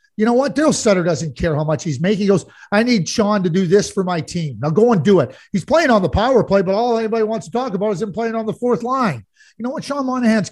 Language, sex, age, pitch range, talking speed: English, male, 40-59, 185-275 Hz, 295 wpm